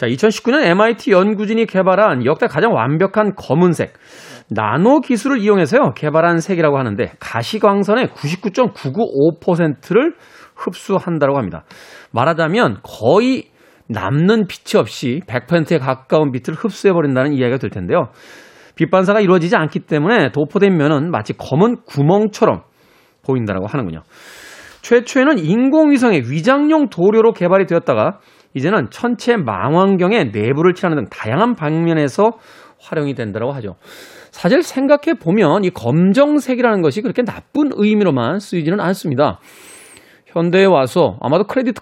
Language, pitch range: Korean, 150-220 Hz